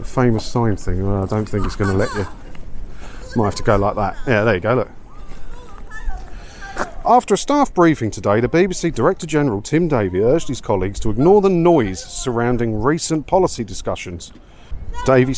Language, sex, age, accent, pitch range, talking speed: English, male, 40-59, British, 95-140 Hz, 175 wpm